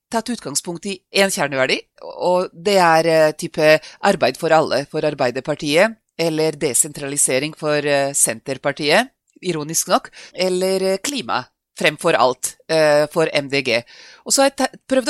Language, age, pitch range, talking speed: English, 30-49, 150-210 Hz, 120 wpm